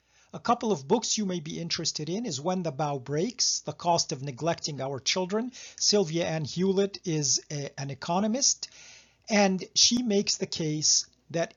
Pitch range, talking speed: 150-205 Hz, 165 wpm